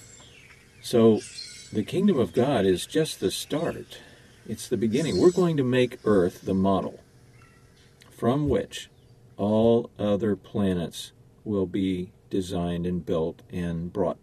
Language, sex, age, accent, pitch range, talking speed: English, male, 50-69, American, 100-125 Hz, 130 wpm